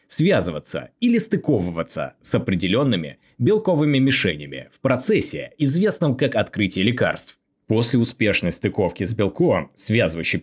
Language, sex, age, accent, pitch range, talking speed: Russian, male, 20-39, native, 95-135 Hz, 110 wpm